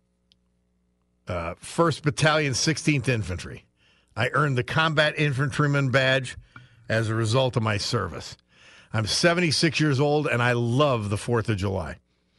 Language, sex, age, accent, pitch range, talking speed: English, male, 50-69, American, 90-140 Hz, 135 wpm